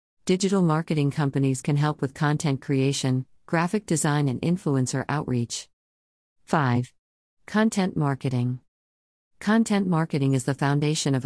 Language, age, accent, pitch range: English, 50-69, American, 130-155 Hz